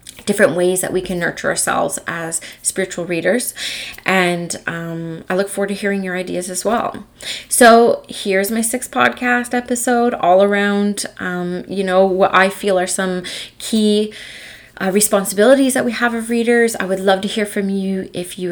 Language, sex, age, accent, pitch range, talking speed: English, female, 20-39, American, 185-225 Hz, 175 wpm